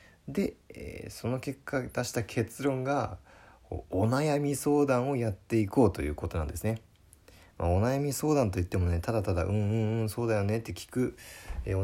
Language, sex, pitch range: Japanese, male, 90-130 Hz